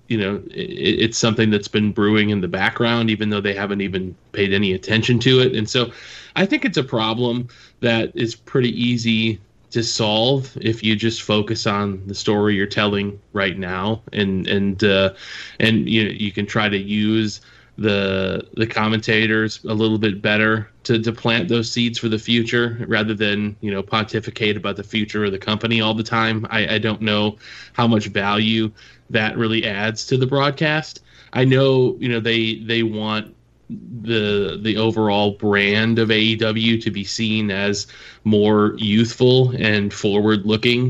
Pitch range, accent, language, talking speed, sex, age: 105-115 Hz, American, English, 175 wpm, male, 20-39